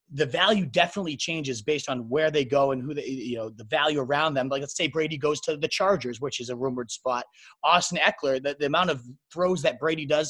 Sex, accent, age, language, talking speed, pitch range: male, American, 30-49, English, 240 wpm, 135-170 Hz